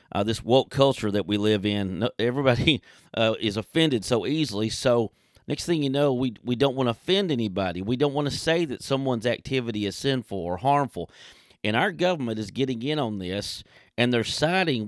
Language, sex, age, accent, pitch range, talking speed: English, male, 40-59, American, 110-135 Hz, 200 wpm